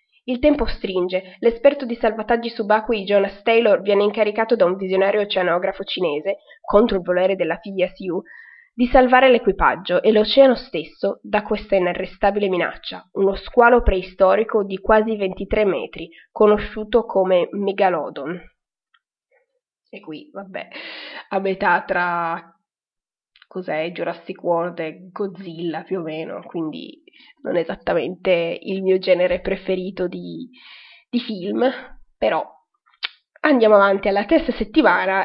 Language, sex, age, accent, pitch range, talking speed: Italian, female, 20-39, native, 185-240 Hz, 125 wpm